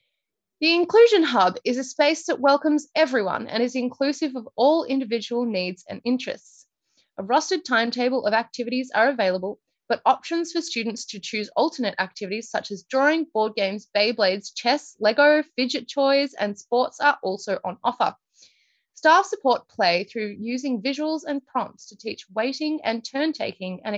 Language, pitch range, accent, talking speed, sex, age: English, 210-290 Hz, Australian, 160 wpm, female, 20-39